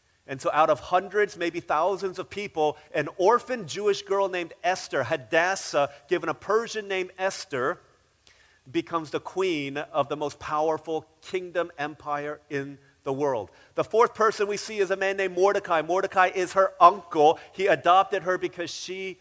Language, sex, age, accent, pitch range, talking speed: English, male, 40-59, American, 150-185 Hz, 160 wpm